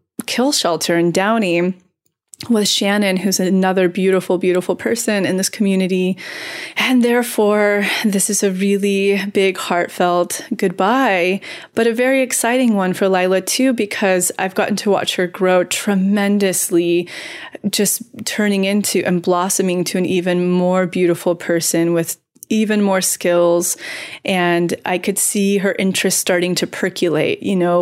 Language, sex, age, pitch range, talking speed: English, female, 20-39, 175-205 Hz, 140 wpm